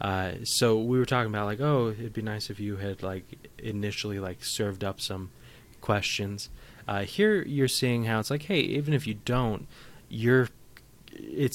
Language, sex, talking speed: English, male, 180 wpm